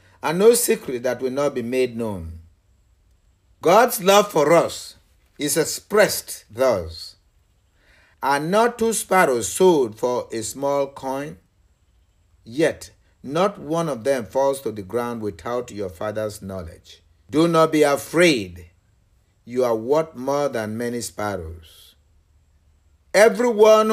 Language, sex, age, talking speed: English, male, 50-69, 125 wpm